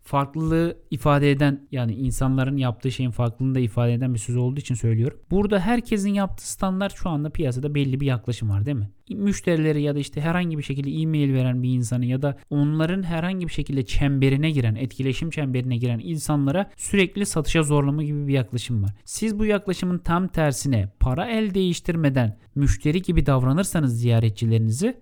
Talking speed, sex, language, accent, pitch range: 170 wpm, male, Turkish, native, 125-165 Hz